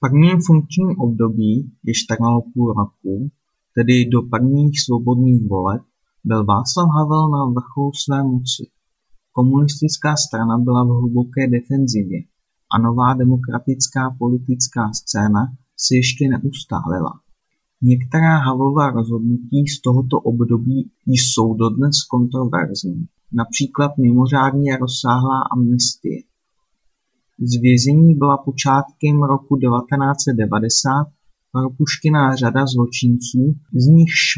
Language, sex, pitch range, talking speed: Czech, male, 120-140 Hz, 100 wpm